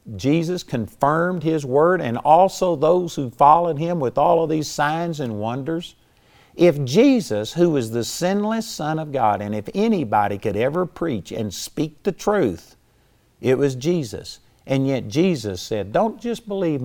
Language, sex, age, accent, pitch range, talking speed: English, male, 50-69, American, 110-170 Hz, 165 wpm